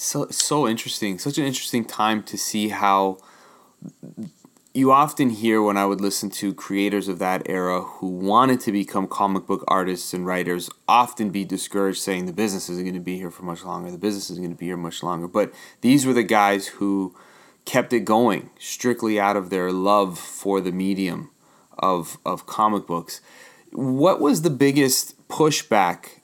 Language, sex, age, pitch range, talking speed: English, male, 30-49, 95-120 Hz, 185 wpm